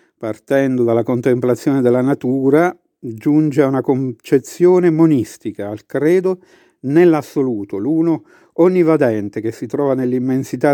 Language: Italian